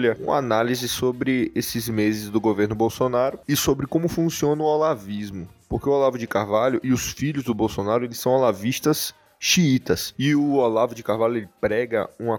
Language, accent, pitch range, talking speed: Portuguese, Brazilian, 115-145 Hz, 175 wpm